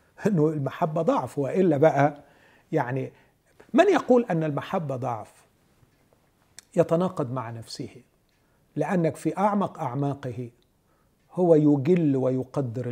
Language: Arabic